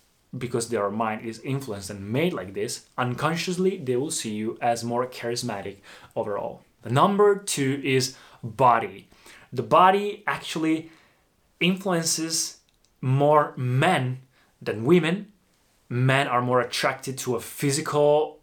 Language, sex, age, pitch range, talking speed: Italian, male, 20-39, 120-150 Hz, 125 wpm